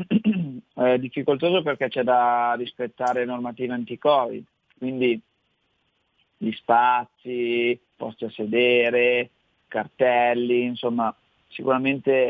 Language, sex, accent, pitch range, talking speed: Italian, male, native, 115-130 Hz, 90 wpm